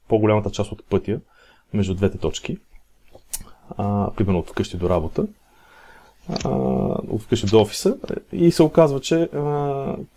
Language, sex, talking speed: Bulgarian, male, 135 wpm